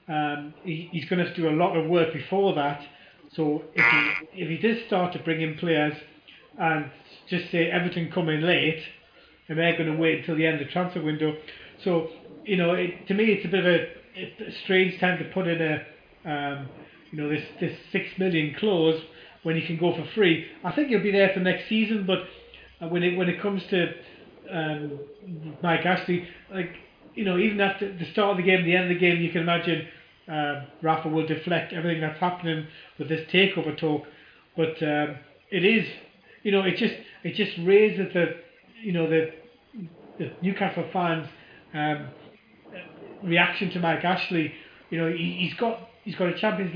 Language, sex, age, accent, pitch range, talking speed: English, male, 30-49, British, 160-185 Hz, 200 wpm